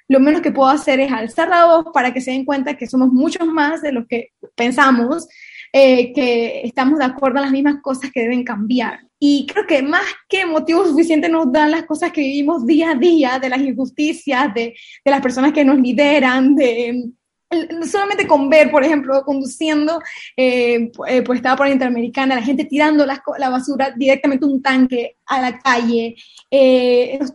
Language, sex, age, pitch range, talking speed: English, female, 10-29, 255-315 Hz, 190 wpm